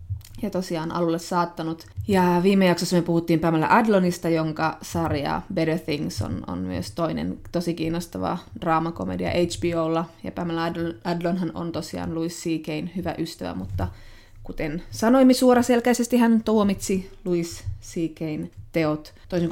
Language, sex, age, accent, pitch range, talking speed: Finnish, female, 20-39, native, 155-175 Hz, 130 wpm